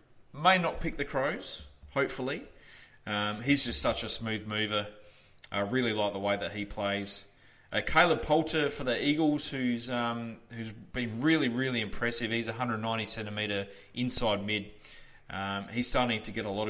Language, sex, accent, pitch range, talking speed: English, male, Australian, 100-120 Hz, 160 wpm